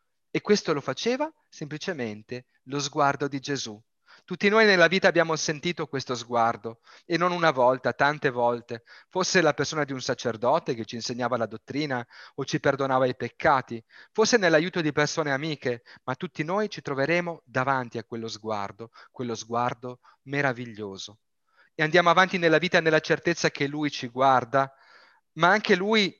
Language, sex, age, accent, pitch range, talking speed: Italian, male, 30-49, native, 130-170 Hz, 160 wpm